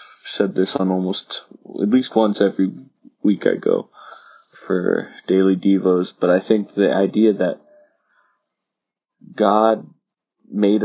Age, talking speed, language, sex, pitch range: 20-39, 120 wpm, English, male, 90-110 Hz